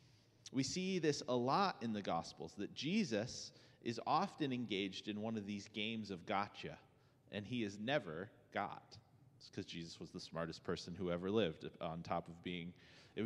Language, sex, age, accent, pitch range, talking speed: English, male, 30-49, American, 105-135 Hz, 180 wpm